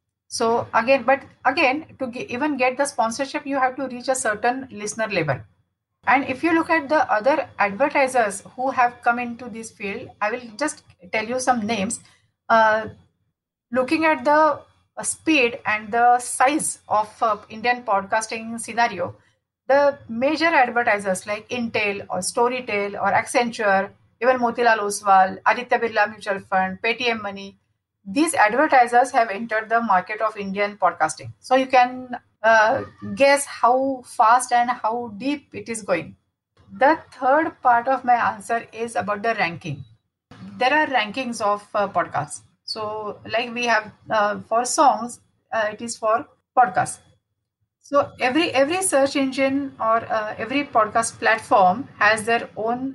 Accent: native